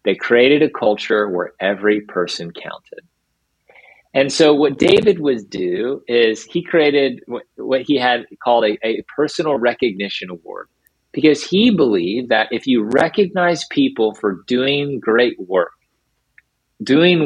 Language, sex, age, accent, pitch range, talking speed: English, male, 30-49, American, 115-150 Hz, 135 wpm